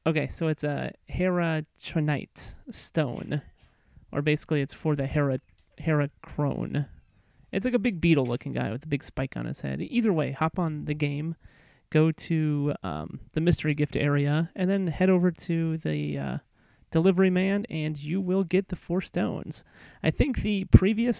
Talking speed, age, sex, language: 165 wpm, 30-49, male, English